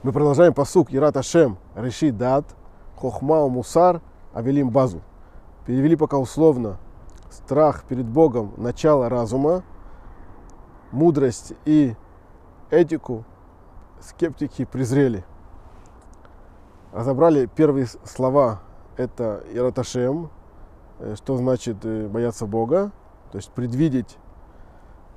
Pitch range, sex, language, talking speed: 95-145 Hz, male, Russian, 85 wpm